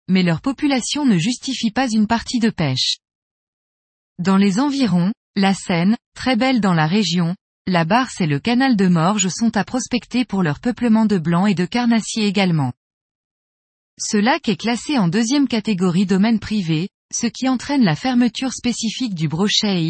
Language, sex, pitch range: French, female, 185-245 Hz